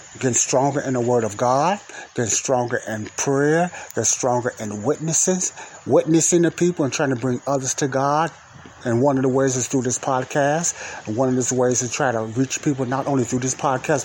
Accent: American